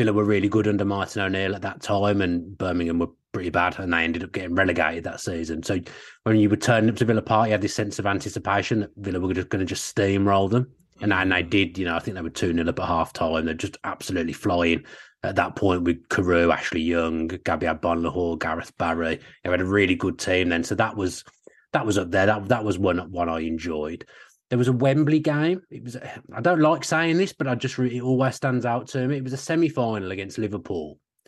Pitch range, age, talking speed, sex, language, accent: 90-120 Hz, 30-49, 240 wpm, male, English, British